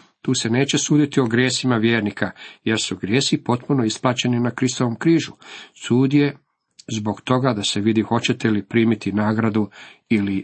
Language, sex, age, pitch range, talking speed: Croatian, male, 50-69, 110-135 Hz, 155 wpm